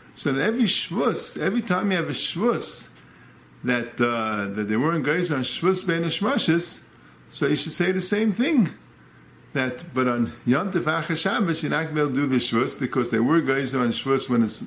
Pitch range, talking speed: 130-195 Hz, 210 wpm